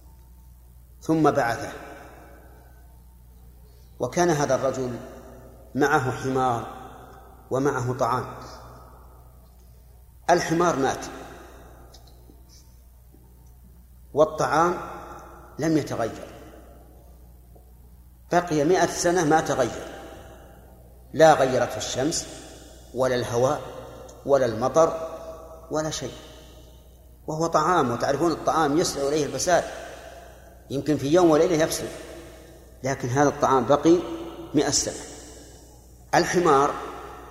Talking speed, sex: 75 wpm, male